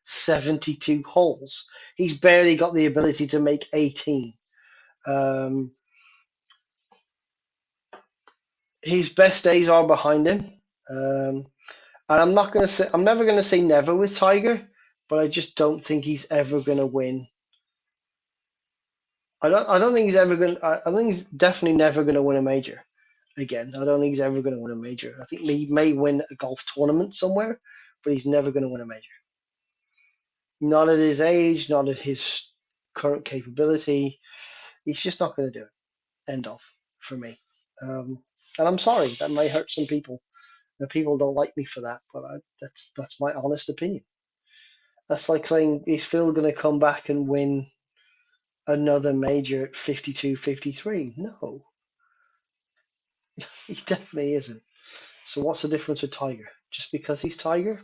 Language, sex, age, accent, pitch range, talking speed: English, male, 20-39, British, 140-170 Hz, 160 wpm